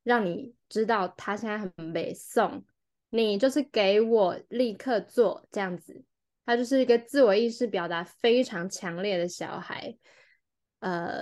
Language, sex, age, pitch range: Chinese, female, 10-29, 185-250 Hz